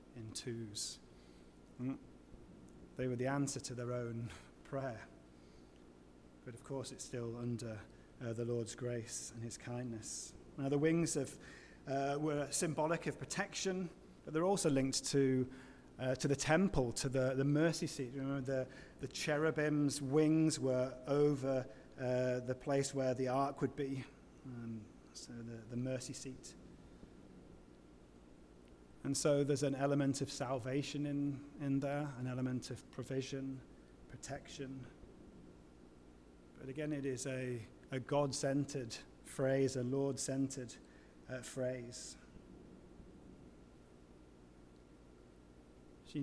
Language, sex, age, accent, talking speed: English, male, 30-49, British, 125 wpm